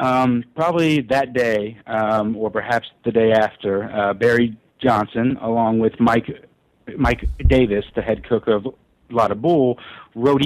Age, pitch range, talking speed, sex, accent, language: 50-69, 110-125 Hz, 145 wpm, male, American, English